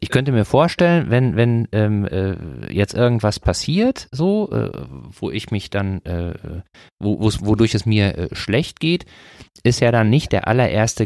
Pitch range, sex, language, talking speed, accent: 100-140 Hz, male, German, 165 wpm, German